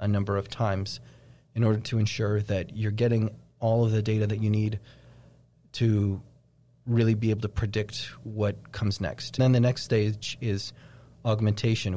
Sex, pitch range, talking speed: male, 105-125 Hz, 165 wpm